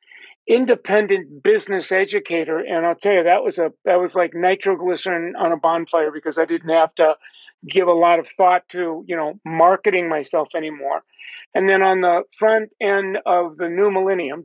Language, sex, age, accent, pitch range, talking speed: English, male, 50-69, American, 170-205 Hz, 180 wpm